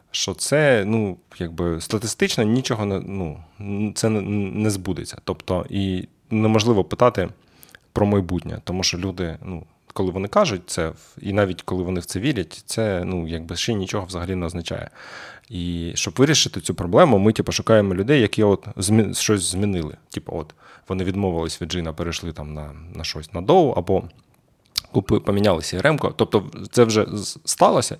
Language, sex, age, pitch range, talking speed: Ukrainian, male, 20-39, 85-110 Hz, 160 wpm